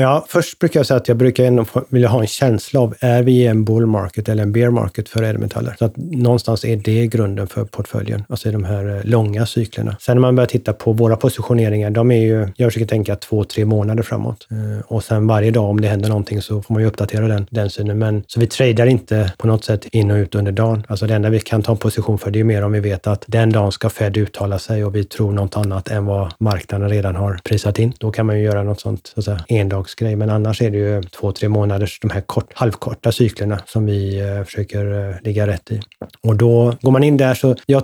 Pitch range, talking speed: 105-115 Hz, 255 wpm